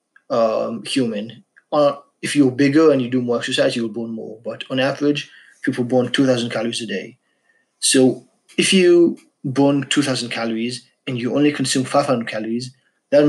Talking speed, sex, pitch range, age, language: 165 wpm, male, 120-145 Hz, 20-39, English